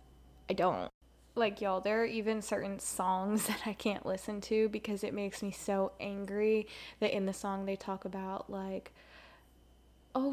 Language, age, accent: English, 10-29, American